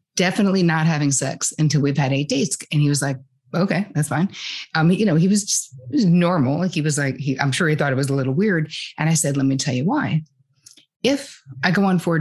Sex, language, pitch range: female, English, 140-170 Hz